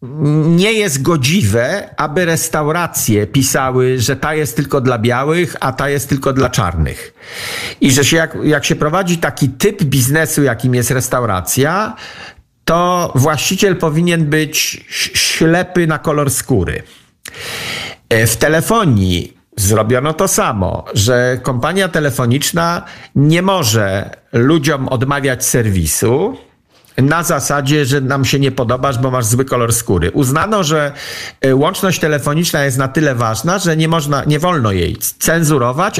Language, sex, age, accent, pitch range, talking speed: Polish, male, 50-69, native, 120-160 Hz, 130 wpm